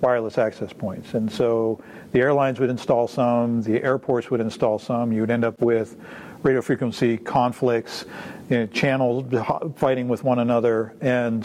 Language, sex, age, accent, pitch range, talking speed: English, male, 50-69, American, 115-130 Hz, 160 wpm